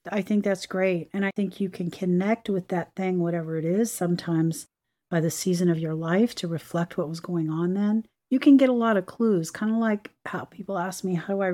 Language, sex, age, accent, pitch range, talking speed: English, female, 40-59, American, 175-210 Hz, 245 wpm